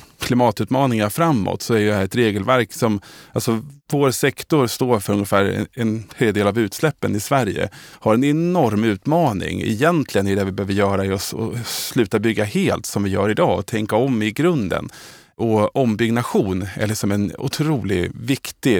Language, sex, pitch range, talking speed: Swedish, male, 100-130 Hz, 165 wpm